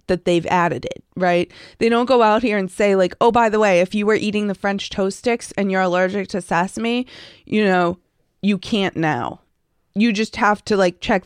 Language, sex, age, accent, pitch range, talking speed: English, female, 20-39, American, 170-205 Hz, 220 wpm